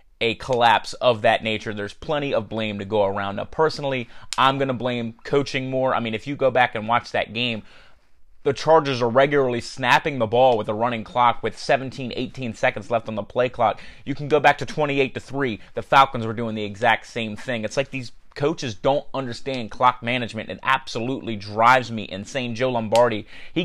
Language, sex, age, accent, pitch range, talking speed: English, male, 30-49, American, 110-135 Hz, 210 wpm